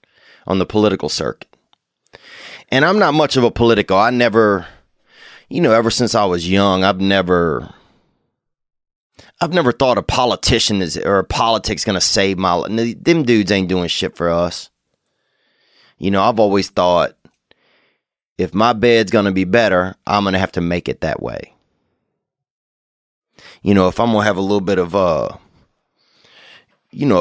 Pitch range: 90-115 Hz